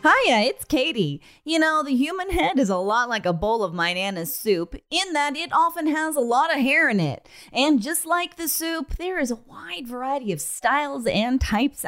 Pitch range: 190-285 Hz